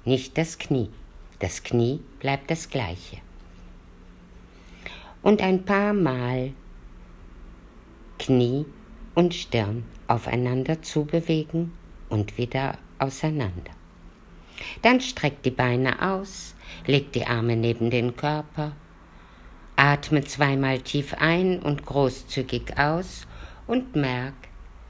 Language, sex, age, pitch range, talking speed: German, female, 50-69, 105-160 Hz, 95 wpm